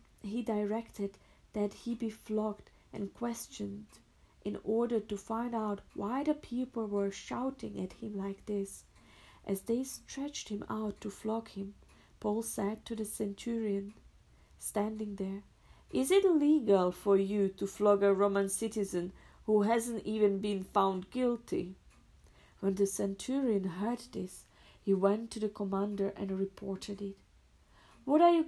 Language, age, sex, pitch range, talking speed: English, 50-69, female, 195-230 Hz, 145 wpm